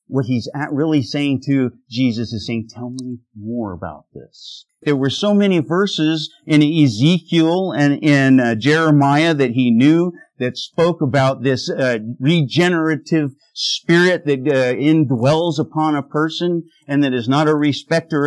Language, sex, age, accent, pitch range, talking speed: English, male, 50-69, American, 130-165 Hz, 155 wpm